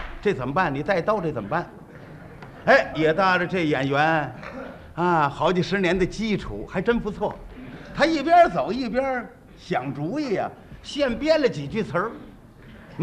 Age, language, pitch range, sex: 50-69, Chinese, 190-270 Hz, male